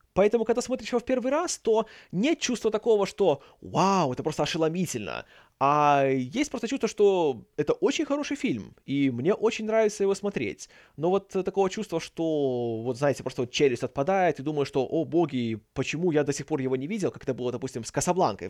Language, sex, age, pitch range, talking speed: Russian, male, 20-39, 135-200 Hz, 200 wpm